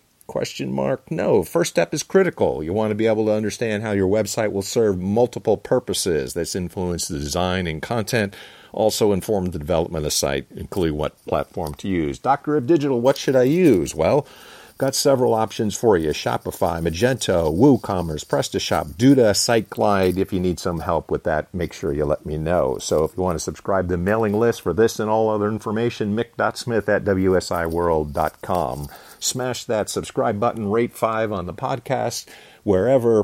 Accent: American